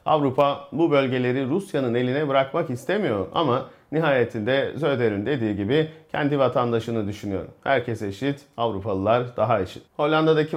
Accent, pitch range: native, 115-145 Hz